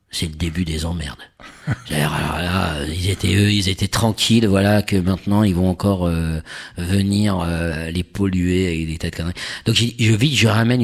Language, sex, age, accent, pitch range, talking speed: French, male, 50-69, French, 85-110 Hz, 175 wpm